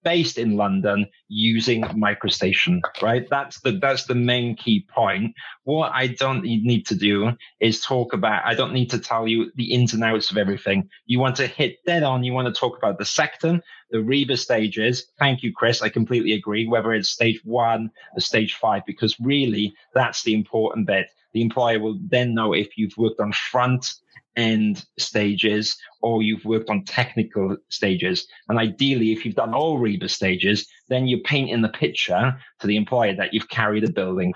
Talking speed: 190 wpm